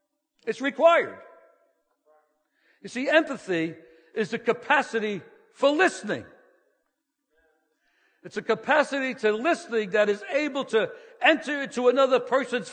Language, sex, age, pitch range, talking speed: English, male, 60-79, 190-300 Hz, 110 wpm